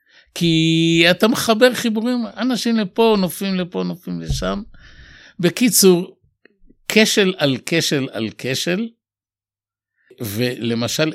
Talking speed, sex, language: 90 wpm, male, Hebrew